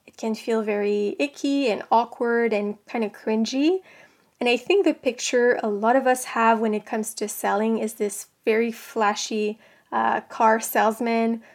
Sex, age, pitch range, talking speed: female, 20-39, 220-250 Hz, 165 wpm